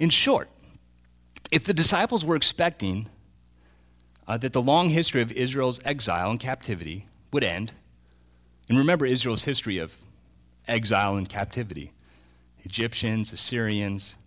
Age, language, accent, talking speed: 30-49, English, American, 120 wpm